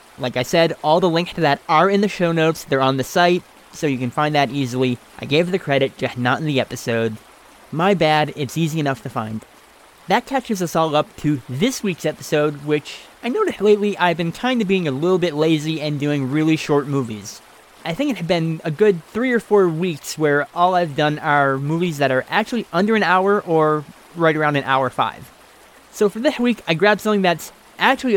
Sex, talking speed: male, 220 wpm